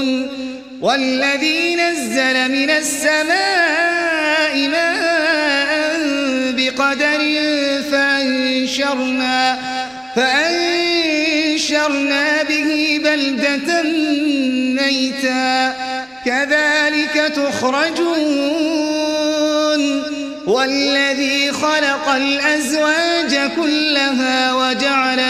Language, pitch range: Arabic, 265-305 Hz